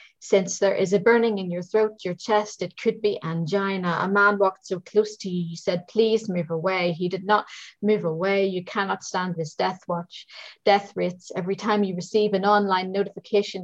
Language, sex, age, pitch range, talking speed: English, female, 40-59, 175-210 Hz, 200 wpm